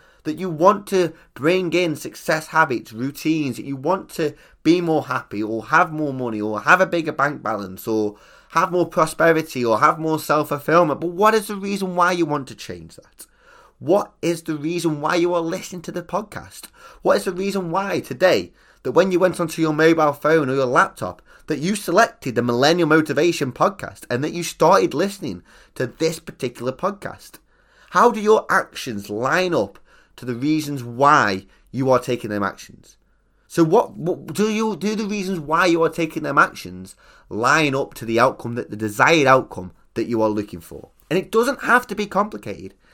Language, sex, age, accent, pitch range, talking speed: English, male, 20-39, British, 125-180 Hz, 195 wpm